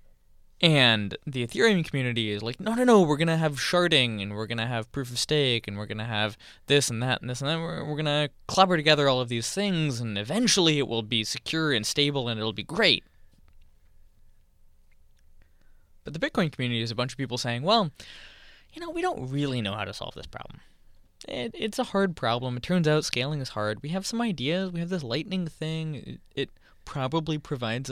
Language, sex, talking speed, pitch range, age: English, male, 215 wpm, 120-170 Hz, 20-39